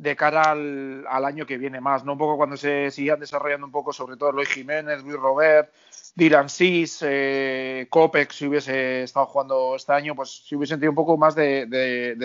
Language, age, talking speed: Spanish, 40-59, 205 wpm